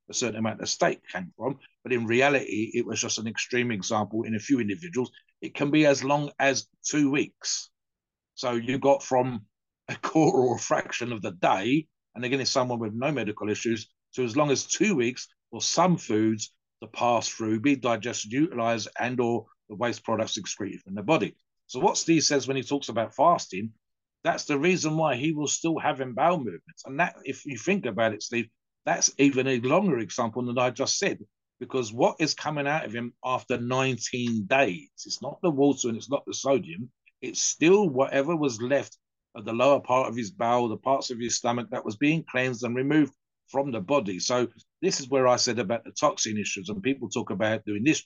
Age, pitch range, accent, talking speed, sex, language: 50-69, 110-140 Hz, British, 210 wpm, male, English